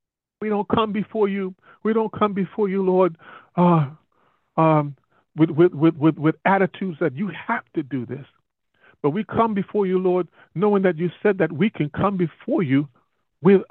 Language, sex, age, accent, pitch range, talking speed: English, male, 40-59, American, 155-200 Hz, 185 wpm